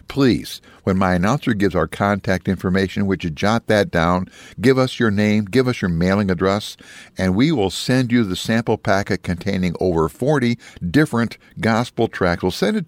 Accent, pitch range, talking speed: American, 95-120 Hz, 180 wpm